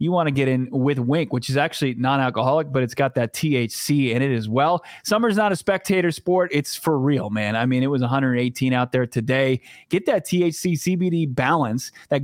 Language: English